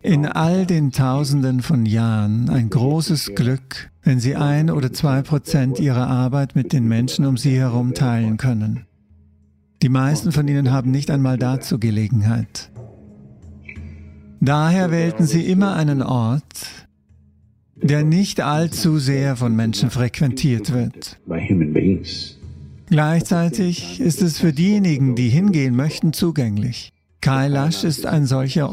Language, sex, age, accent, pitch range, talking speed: English, male, 50-69, German, 115-160 Hz, 125 wpm